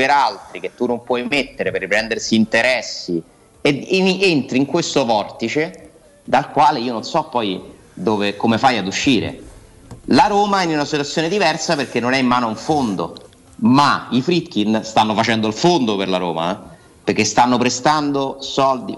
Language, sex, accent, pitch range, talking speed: Italian, male, native, 105-140 Hz, 180 wpm